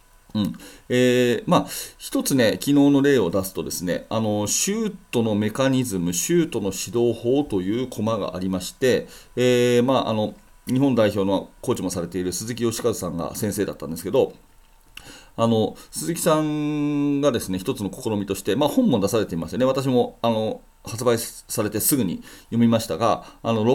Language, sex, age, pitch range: Japanese, male, 40-59, 105-140 Hz